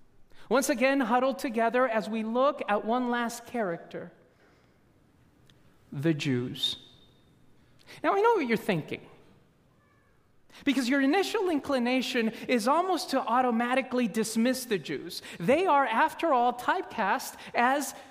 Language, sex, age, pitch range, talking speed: English, male, 40-59, 225-285 Hz, 120 wpm